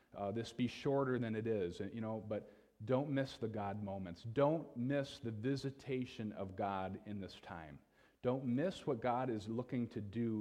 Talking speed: 185 wpm